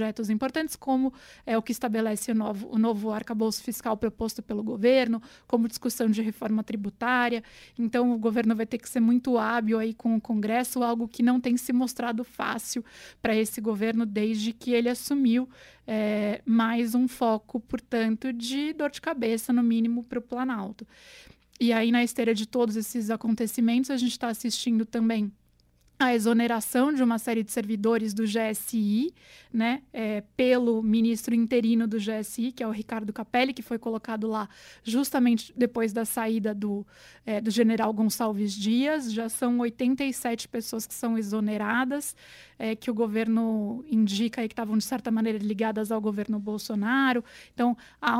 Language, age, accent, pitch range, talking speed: Portuguese, 20-39, Brazilian, 220-245 Hz, 165 wpm